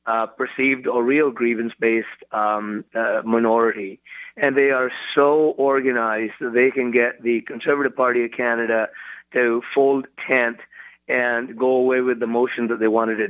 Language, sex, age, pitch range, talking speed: English, male, 30-49, 115-150 Hz, 160 wpm